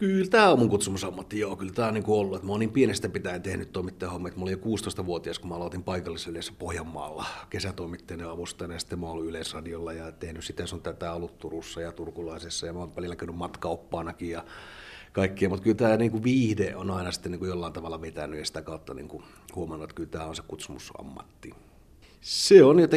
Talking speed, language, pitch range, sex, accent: 200 wpm, Finnish, 85-105 Hz, male, native